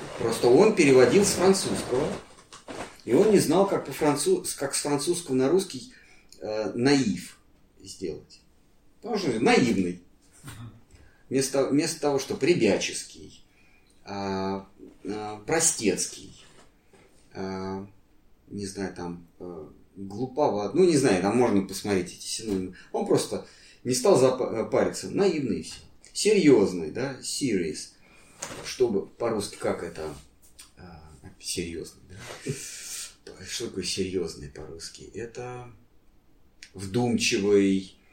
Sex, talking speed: male, 100 wpm